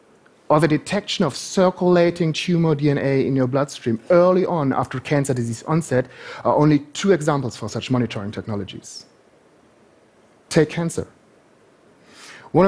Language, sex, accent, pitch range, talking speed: Spanish, male, German, 130-175 Hz, 130 wpm